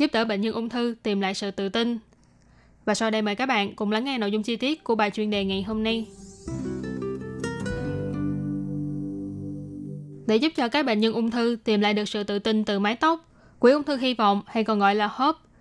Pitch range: 205-245 Hz